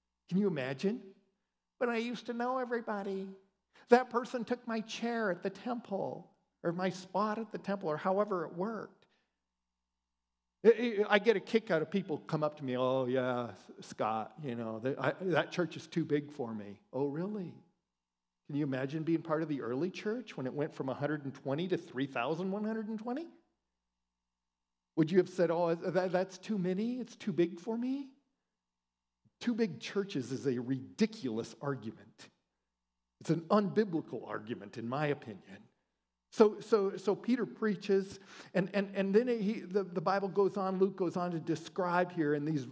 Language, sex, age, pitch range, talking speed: English, male, 50-69, 135-195 Hz, 165 wpm